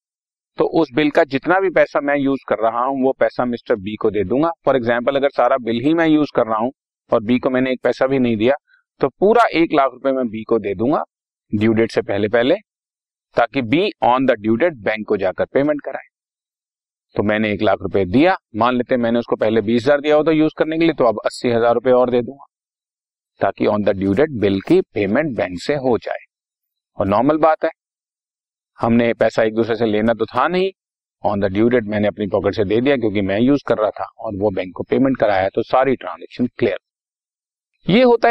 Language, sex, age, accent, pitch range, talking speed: Hindi, male, 40-59, native, 115-160 Hz, 220 wpm